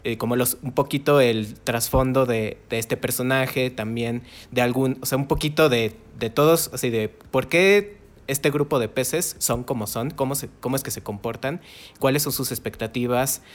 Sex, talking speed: male, 190 wpm